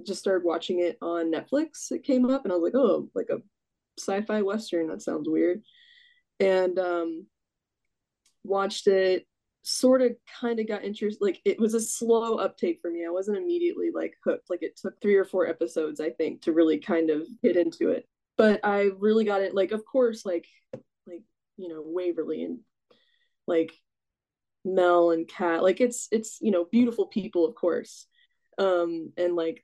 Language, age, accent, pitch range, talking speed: English, 20-39, American, 170-230 Hz, 180 wpm